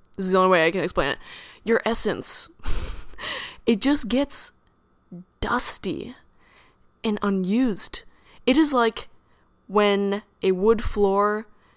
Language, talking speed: English, 120 wpm